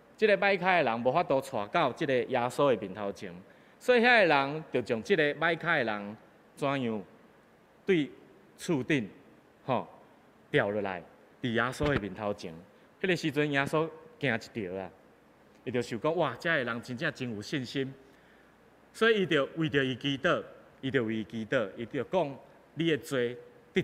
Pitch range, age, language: 115-170 Hz, 20-39, Chinese